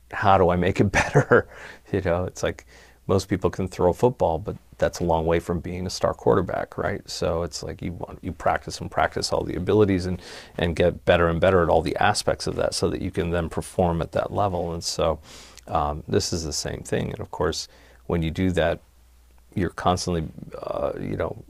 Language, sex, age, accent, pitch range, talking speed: English, male, 40-59, American, 80-90 Hz, 220 wpm